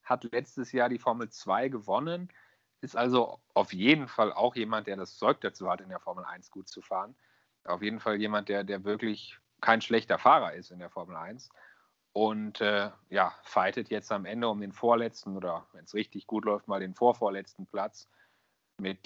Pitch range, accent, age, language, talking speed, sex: 95-115 Hz, German, 30-49, German, 195 wpm, male